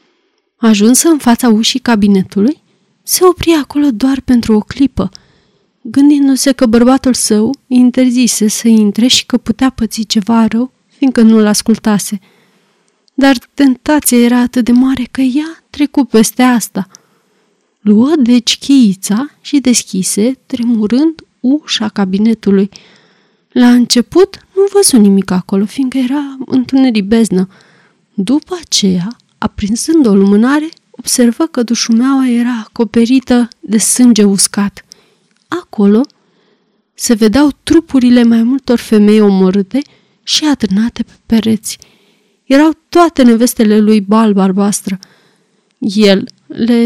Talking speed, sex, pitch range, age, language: 115 wpm, female, 210-265 Hz, 30-49, Romanian